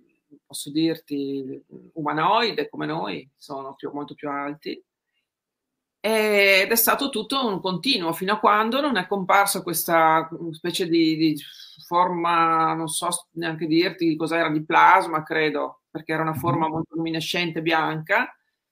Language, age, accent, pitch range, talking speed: Italian, 40-59, native, 155-190 Hz, 135 wpm